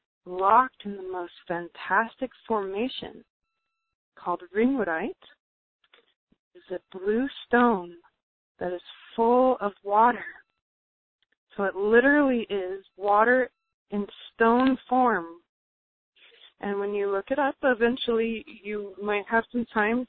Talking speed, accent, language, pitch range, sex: 110 wpm, American, English, 195-255 Hz, female